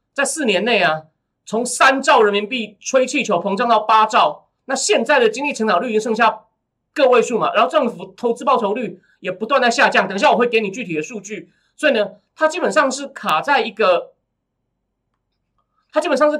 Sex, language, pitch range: male, Chinese, 220-290 Hz